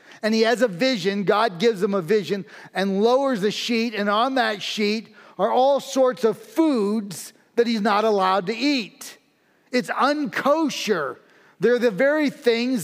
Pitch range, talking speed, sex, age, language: 195-240 Hz, 165 wpm, male, 40-59, English